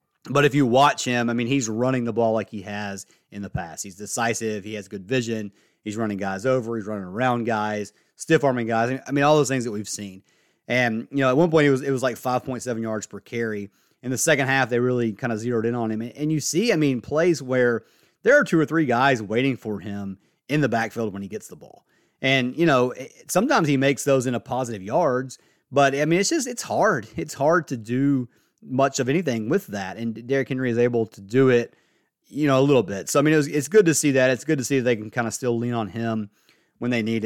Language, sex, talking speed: English, male, 250 wpm